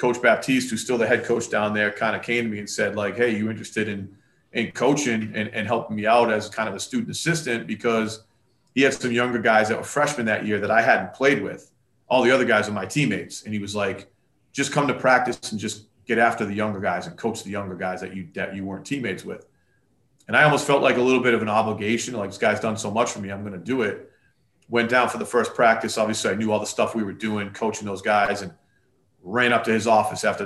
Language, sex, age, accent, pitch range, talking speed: English, male, 30-49, American, 105-120 Hz, 260 wpm